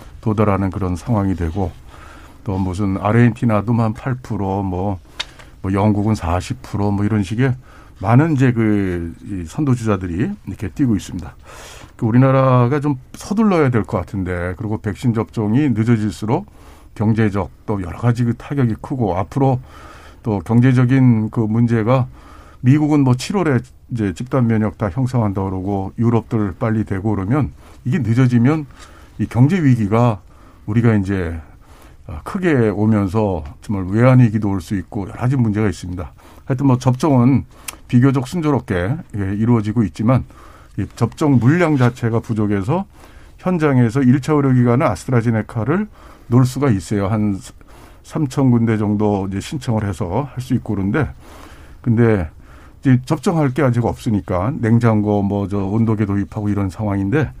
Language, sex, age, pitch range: Korean, male, 60-79, 100-125 Hz